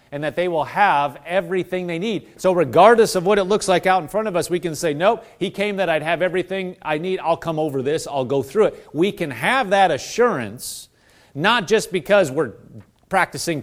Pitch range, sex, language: 145-210 Hz, male, English